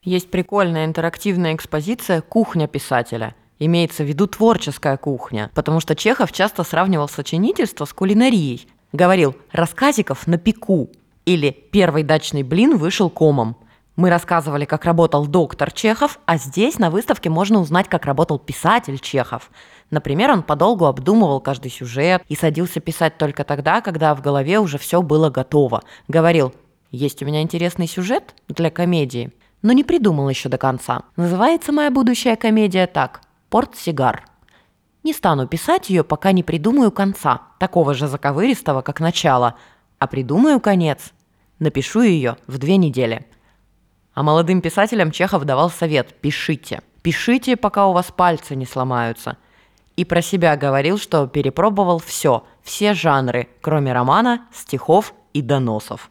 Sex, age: female, 20-39